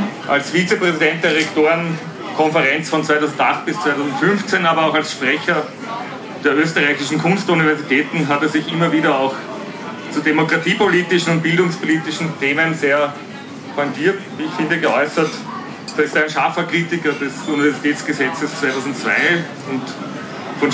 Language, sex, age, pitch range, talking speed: German, male, 40-59, 145-185 Hz, 125 wpm